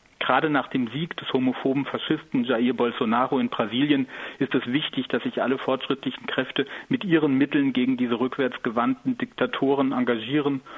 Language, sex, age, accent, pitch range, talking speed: German, male, 40-59, German, 125-170 Hz, 150 wpm